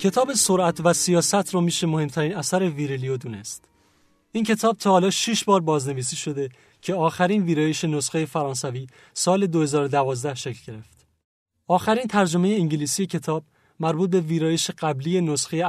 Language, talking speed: Persian, 140 wpm